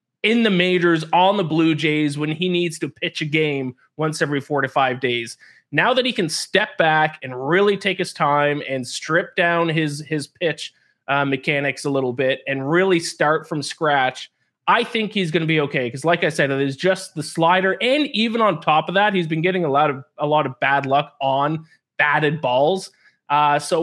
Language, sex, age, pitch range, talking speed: English, male, 20-39, 135-170 Hz, 215 wpm